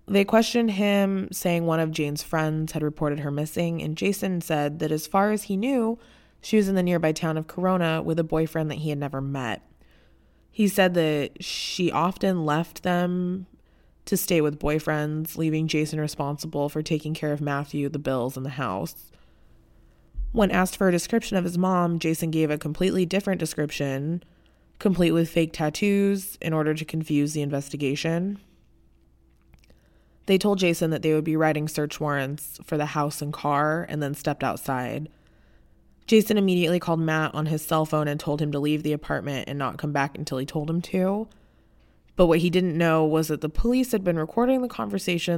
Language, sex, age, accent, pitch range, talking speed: English, female, 20-39, American, 145-175 Hz, 190 wpm